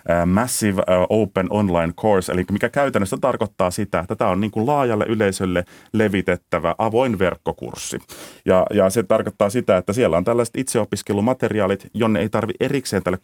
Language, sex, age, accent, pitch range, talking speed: Finnish, male, 30-49, native, 90-110 Hz, 155 wpm